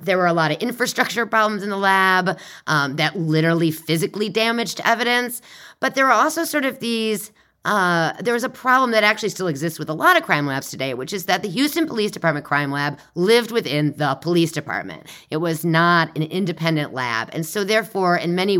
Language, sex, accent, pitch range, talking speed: English, female, American, 160-215 Hz, 205 wpm